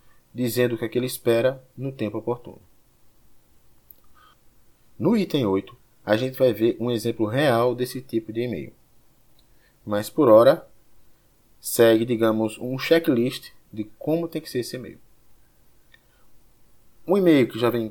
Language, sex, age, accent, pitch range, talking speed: Portuguese, male, 20-39, Brazilian, 105-130 Hz, 135 wpm